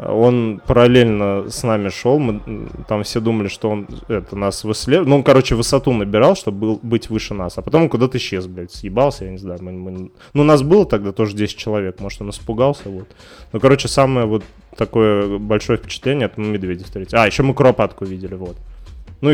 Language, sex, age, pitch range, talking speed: Russian, male, 20-39, 95-120 Hz, 200 wpm